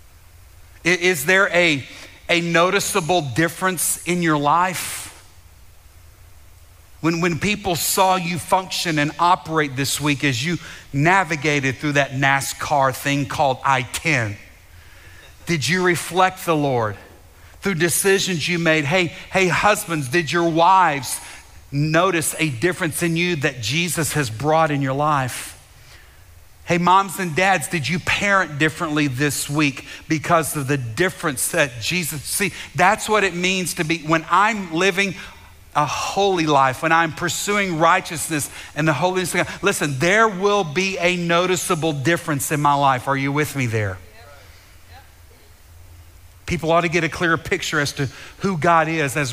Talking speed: 145 wpm